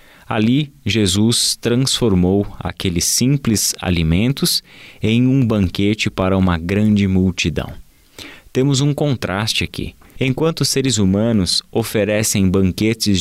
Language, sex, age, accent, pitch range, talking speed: Portuguese, male, 20-39, Brazilian, 90-115 Hz, 105 wpm